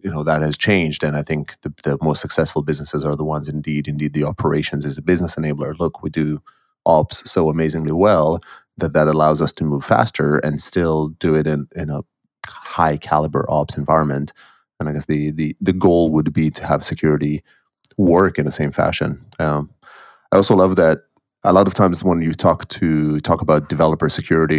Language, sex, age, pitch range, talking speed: English, male, 30-49, 75-85 Hz, 205 wpm